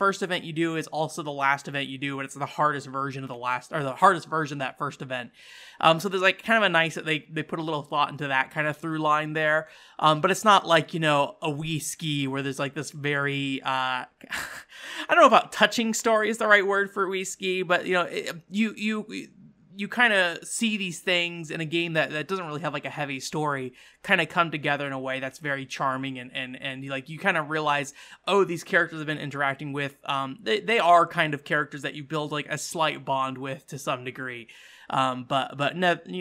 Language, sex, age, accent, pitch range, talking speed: English, male, 20-39, American, 145-180 Hz, 250 wpm